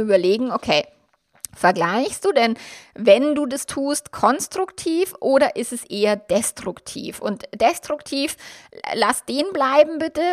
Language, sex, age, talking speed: German, female, 20-39, 120 wpm